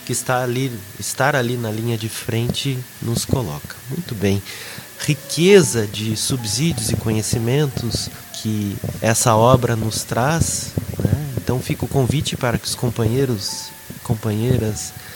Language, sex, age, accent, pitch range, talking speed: Portuguese, male, 30-49, Brazilian, 105-130 Hz, 125 wpm